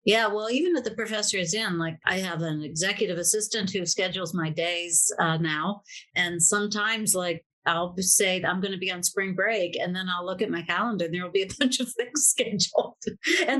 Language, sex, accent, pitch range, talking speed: English, female, American, 180-245 Hz, 215 wpm